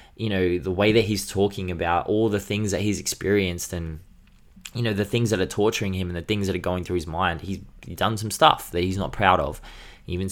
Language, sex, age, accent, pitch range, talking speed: English, male, 20-39, Australian, 85-100 Hz, 255 wpm